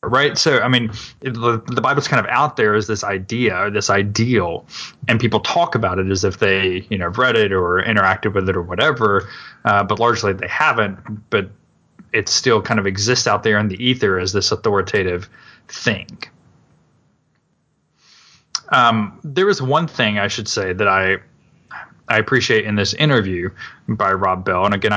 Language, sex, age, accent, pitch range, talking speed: English, male, 20-39, American, 100-125 Hz, 180 wpm